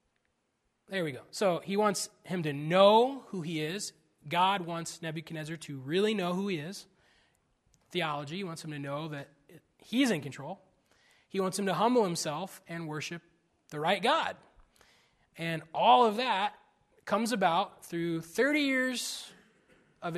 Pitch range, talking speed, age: 150-210 Hz, 155 wpm, 20-39